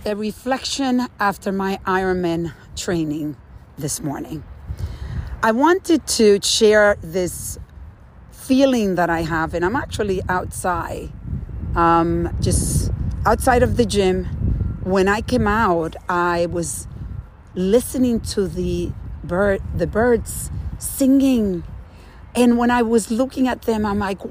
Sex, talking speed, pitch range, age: female, 120 wpm, 170-240 Hz, 40-59